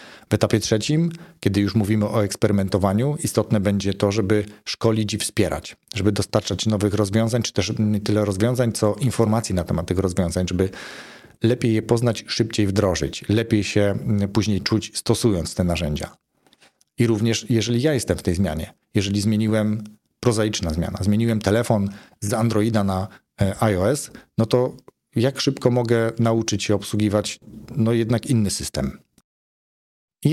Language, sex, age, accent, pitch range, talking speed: Polish, male, 40-59, native, 100-120 Hz, 145 wpm